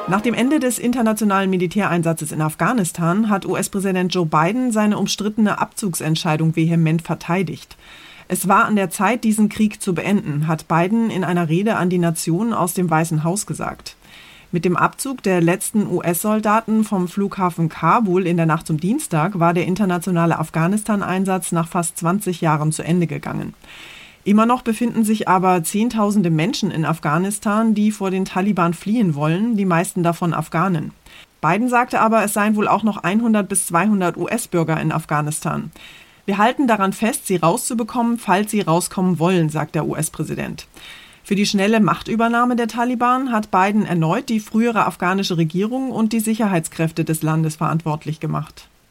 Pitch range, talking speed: 165-215 Hz, 160 wpm